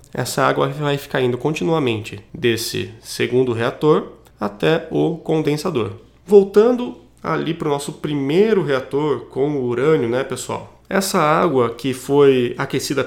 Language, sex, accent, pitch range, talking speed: Portuguese, male, Brazilian, 125-160 Hz, 135 wpm